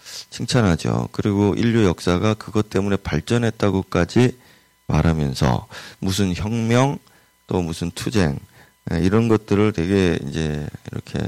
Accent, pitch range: native, 85-120 Hz